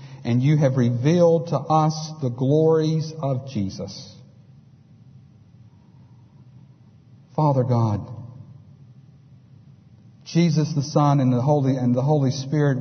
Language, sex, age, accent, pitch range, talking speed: English, male, 50-69, American, 130-160 Hz, 105 wpm